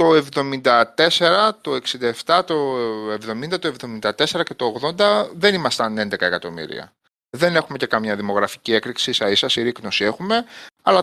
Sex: male